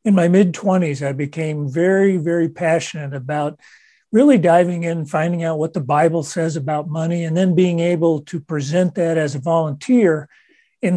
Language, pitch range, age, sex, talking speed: English, 150-180 Hz, 40-59, male, 170 wpm